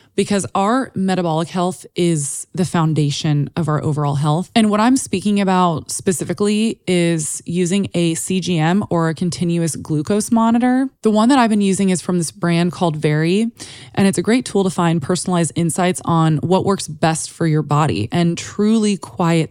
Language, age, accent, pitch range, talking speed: English, 20-39, American, 155-195 Hz, 175 wpm